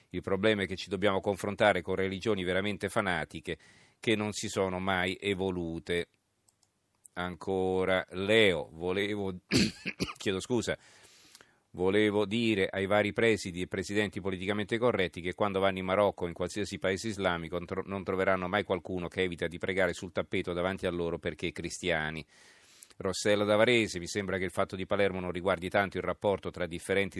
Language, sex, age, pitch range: Italian, male, 40-59, 90-100 Hz